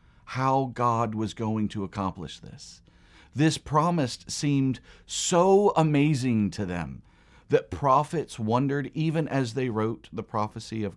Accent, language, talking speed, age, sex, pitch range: American, English, 130 wpm, 40-59, male, 105-140 Hz